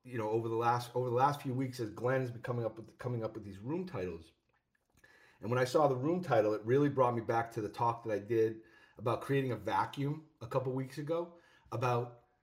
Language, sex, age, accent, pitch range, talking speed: English, male, 40-59, American, 105-130 Hz, 240 wpm